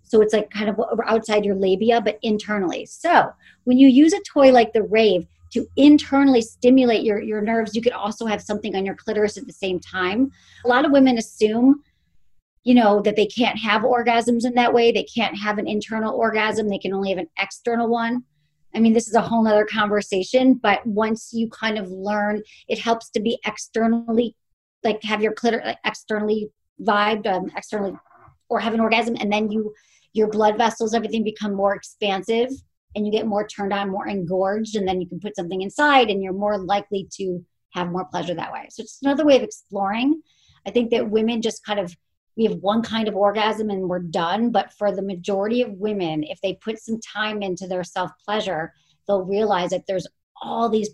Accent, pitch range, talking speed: American, 195-230 Hz, 205 wpm